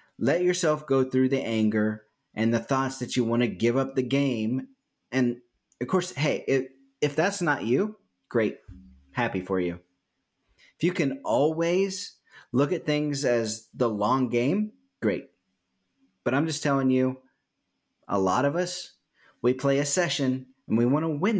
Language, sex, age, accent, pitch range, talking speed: English, male, 30-49, American, 120-160 Hz, 170 wpm